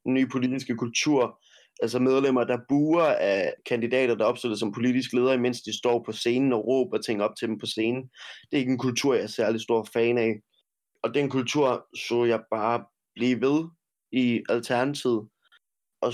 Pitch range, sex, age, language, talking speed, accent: 115-135 Hz, male, 20-39, Danish, 195 wpm, native